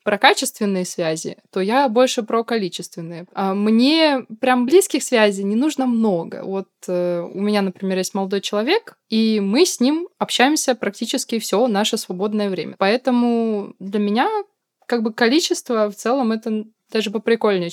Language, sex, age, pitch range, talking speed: Russian, female, 20-39, 190-240 Hz, 145 wpm